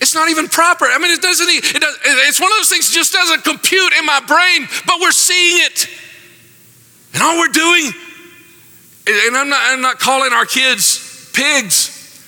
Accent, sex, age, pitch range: American, male, 50-69, 165-255 Hz